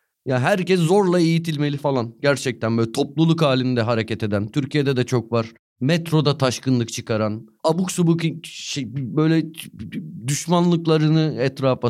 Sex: male